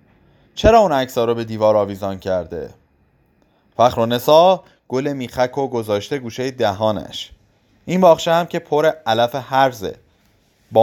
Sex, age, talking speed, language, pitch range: male, 30-49, 135 wpm, Persian, 115-160 Hz